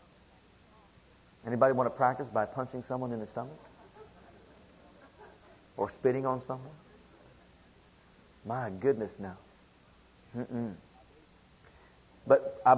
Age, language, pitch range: 50-69, English, 110-140 Hz